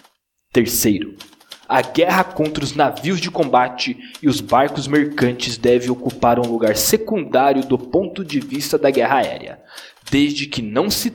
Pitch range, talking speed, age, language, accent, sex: 135-190 Hz, 150 wpm, 20-39, Portuguese, Brazilian, male